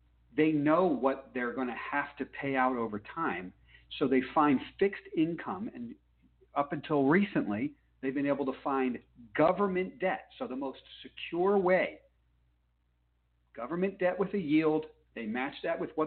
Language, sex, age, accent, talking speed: English, male, 50-69, American, 160 wpm